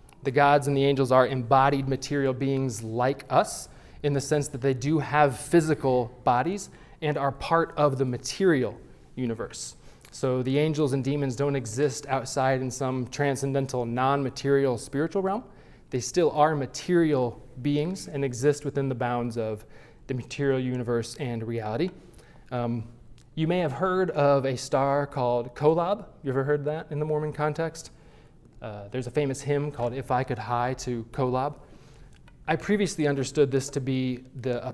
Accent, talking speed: American, 160 wpm